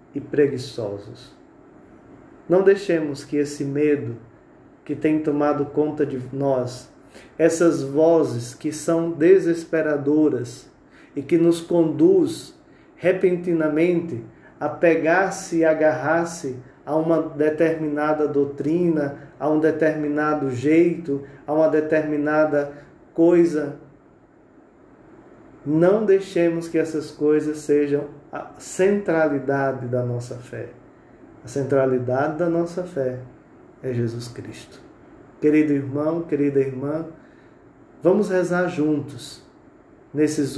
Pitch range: 140-170 Hz